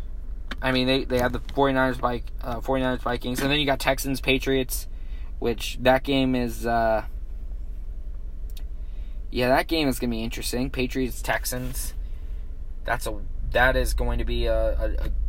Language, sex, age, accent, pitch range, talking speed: English, male, 20-39, American, 110-160 Hz, 160 wpm